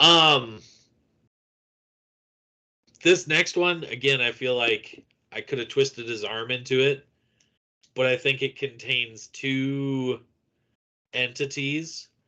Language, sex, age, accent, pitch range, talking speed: English, male, 30-49, American, 115-155 Hz, 110 wpm